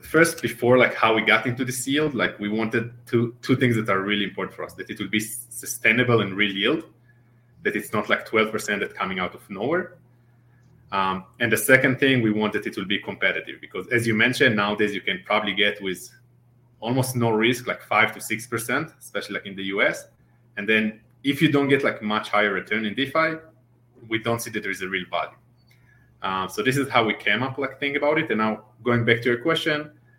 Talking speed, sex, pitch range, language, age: 225 wpm, male, 105-130 Hz, English, 30-49